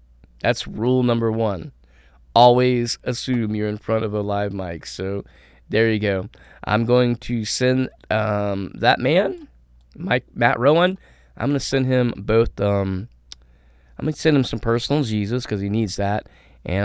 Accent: American